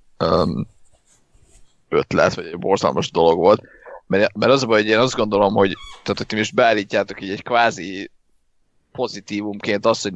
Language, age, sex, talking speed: Hungarian, 30-49, male, 160 wpm